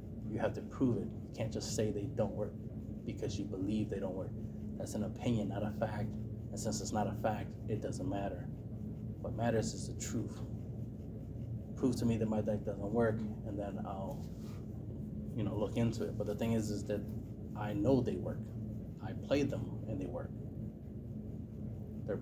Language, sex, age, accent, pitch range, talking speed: English, male, 30-49, American, 105-115 Hz, 190 wpm